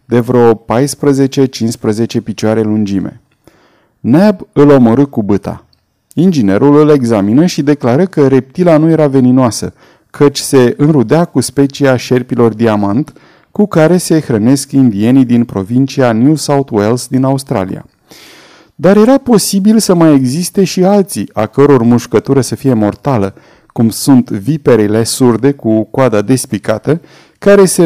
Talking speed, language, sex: 135 wpm, Romanian, male